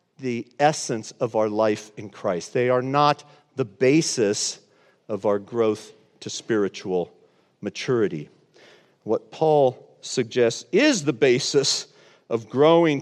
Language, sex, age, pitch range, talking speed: English, male, 50-69, 125-165 Hz, 120 wpm